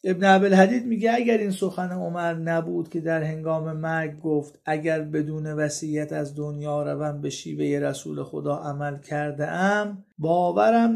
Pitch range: 155-205 Hz